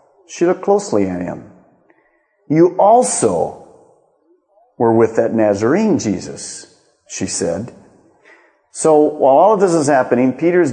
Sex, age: male, 50-69